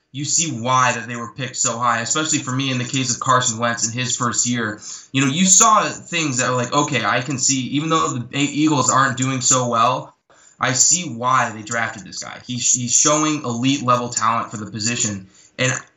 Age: 20-39